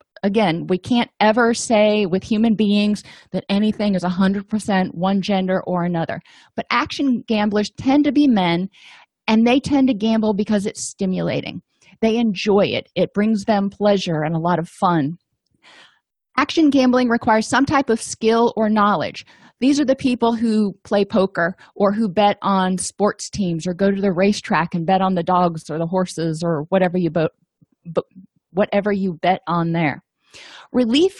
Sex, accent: female, American